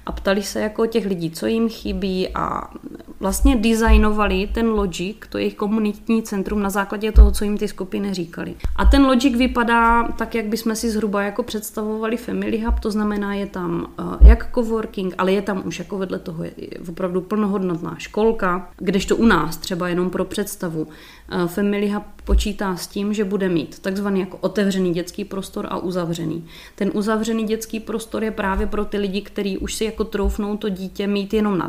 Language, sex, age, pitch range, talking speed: Czech, female, 20-39, 185-220 Hz, 185 wpm